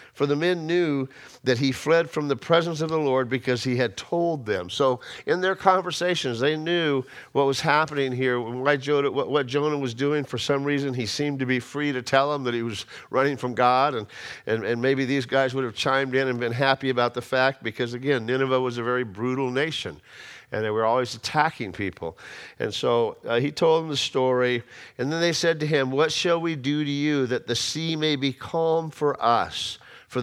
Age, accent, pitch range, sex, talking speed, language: 50-69, American, 130-165 Hz, male, 215 wpm, English